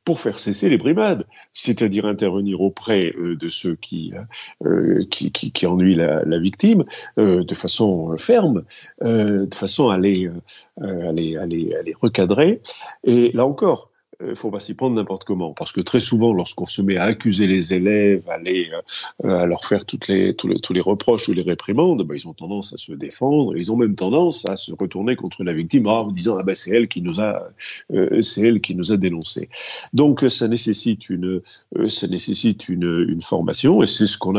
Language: French